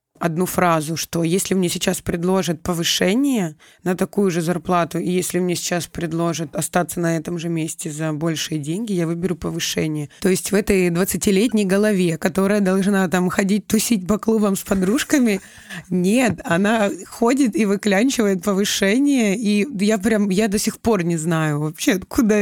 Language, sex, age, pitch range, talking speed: Russian, female, 20-39, 170-210 Hz, 160 wpm